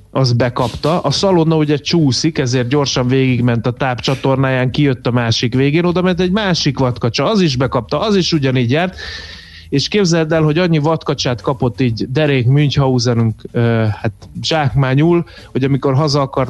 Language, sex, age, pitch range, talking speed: Hungarian, male, 30-49, 120-150 Hz, 155 wpm